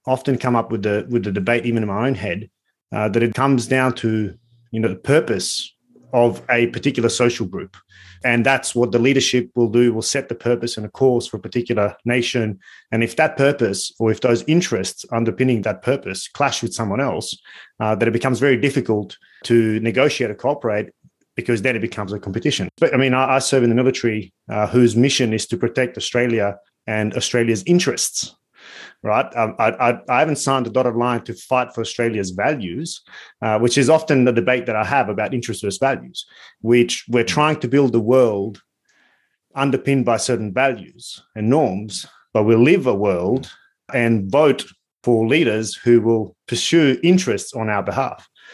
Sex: male